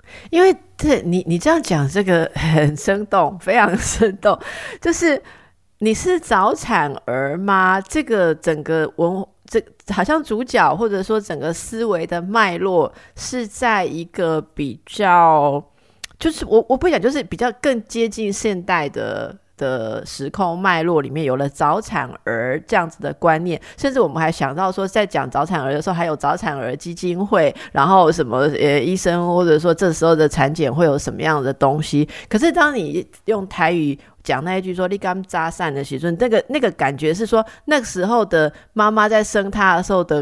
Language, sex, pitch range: Chinese, female, 150-215 Hz